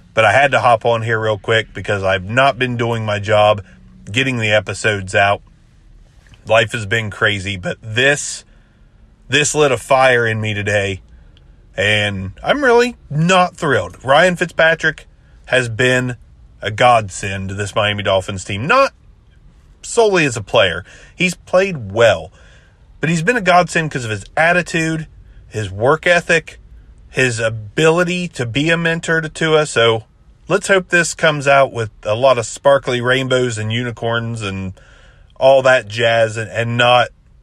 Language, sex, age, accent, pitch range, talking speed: English, male, 30-49, American, 105-140 Hz, 155 wpm